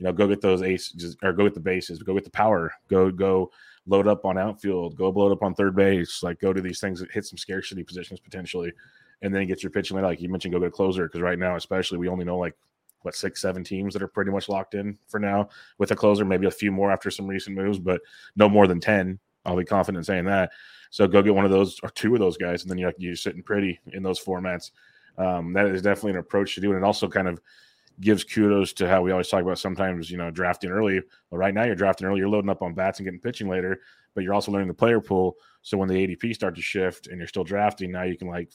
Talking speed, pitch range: 275 wpm, 90-100 Hz